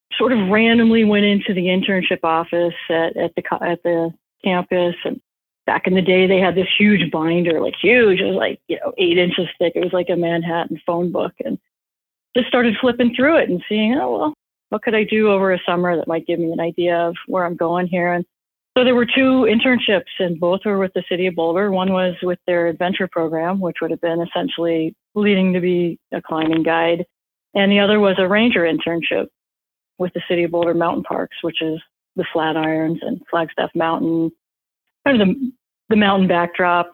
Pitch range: 170-205 Hz